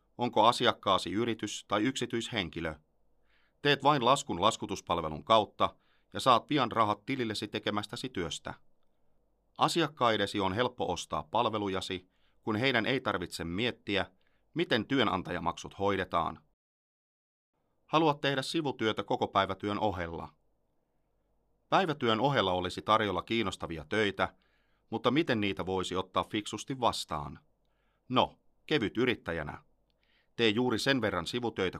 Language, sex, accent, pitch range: Finnish, male, native, 95-120 Hz